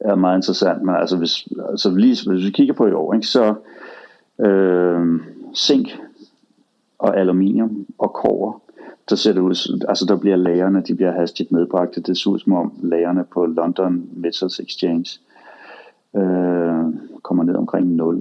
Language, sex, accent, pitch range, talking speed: Danish, male, native, 90-100 Hz, 155 wpm